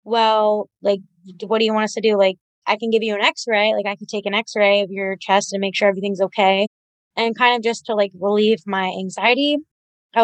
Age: 20-39